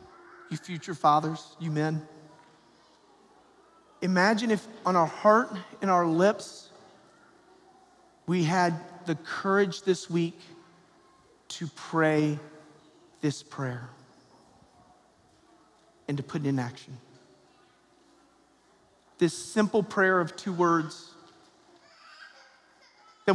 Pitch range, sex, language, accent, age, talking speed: 170-225 Hz, male, English, American, 40-59, 95 wpm